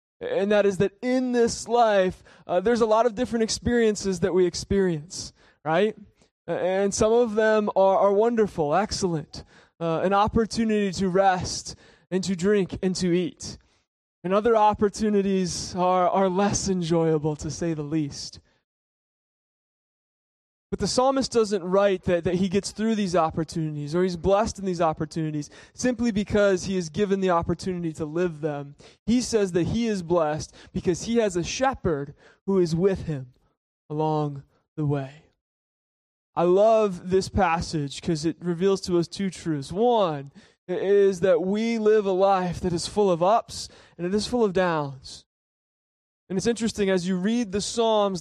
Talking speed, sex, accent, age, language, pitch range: 165 wpm, male, American, 20-39, English, 170-205 Hz